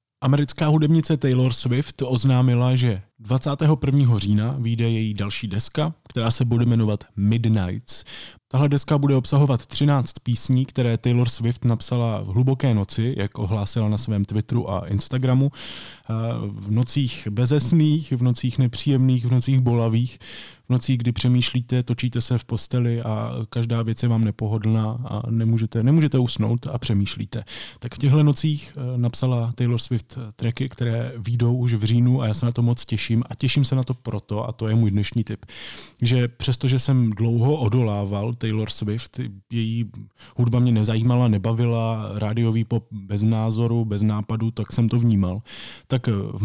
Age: 20-39